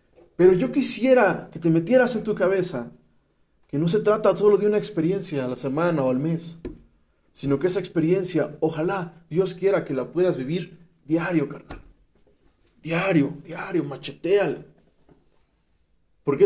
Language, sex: Spanish, male